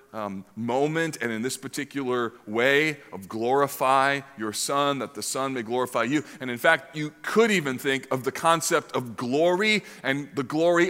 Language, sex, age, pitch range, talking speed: English, male, 40-59, 125-155 Hz, 175 wpm